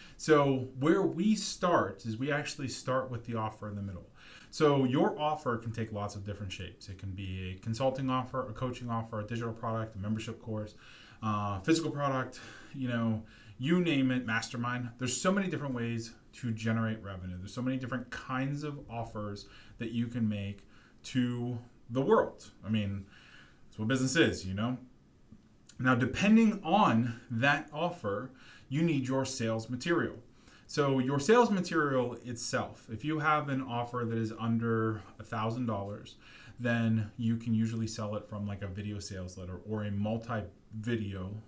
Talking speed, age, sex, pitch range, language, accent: 170 wpm, 20-39, male, 105-130 Hz, English, American